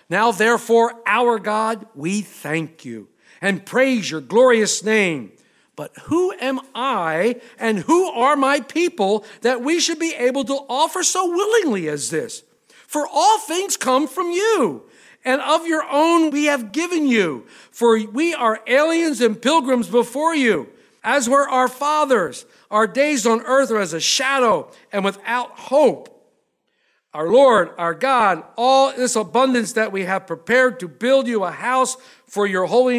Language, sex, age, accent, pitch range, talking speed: English, male, 50-69, American, 205-280 Hz, 160 wpm